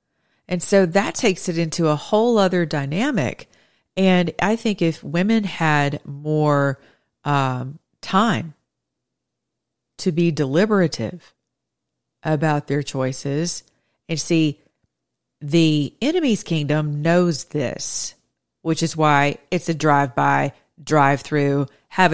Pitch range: 140-170 Hz